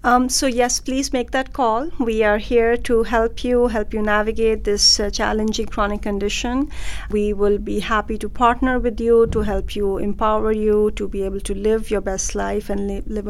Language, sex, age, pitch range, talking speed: English, female, 50-69, 205-235 Hz, 205 wpm